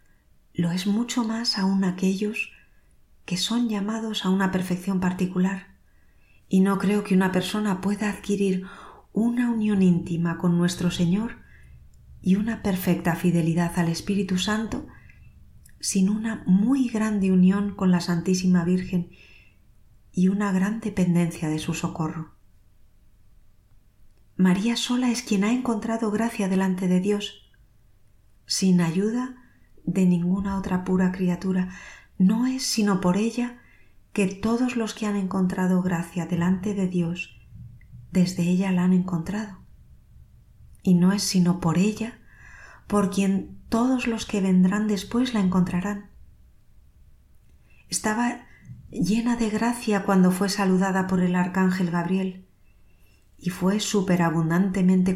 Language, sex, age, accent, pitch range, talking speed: Spanish, female, 40-59, Spanish, 175-205 Hz, 125 wpm